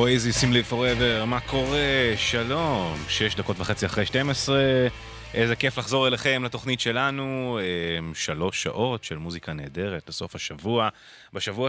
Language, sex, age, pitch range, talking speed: English, male, 20-39, 90-120 Hz, 130 wpm